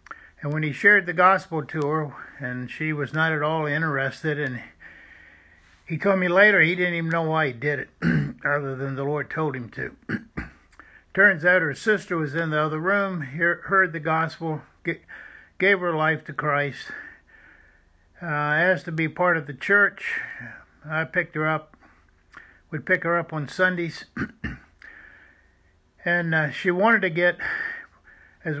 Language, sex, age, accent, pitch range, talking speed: English, male, 60-79, American, 140-175 Hz, 160 wpm